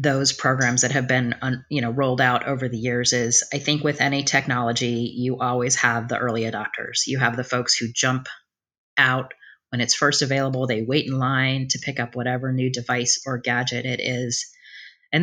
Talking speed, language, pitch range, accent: 195 wpm, English, 125-145 Hz, American